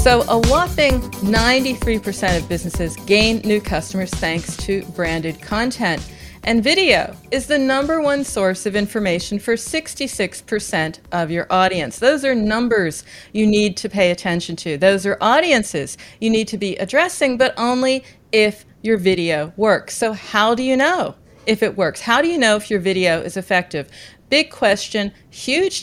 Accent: American